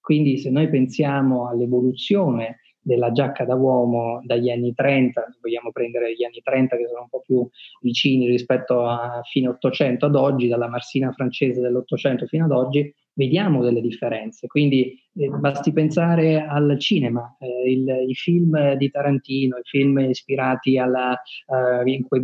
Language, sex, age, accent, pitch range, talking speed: English, male, 30-49, Italian, 125-145 Hz, 150 wpm